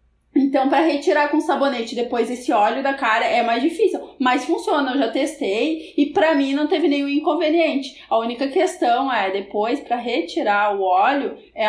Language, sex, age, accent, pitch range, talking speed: Portuguese, female, 20-39, Brazilian, 230-330 Hz, 180 wpm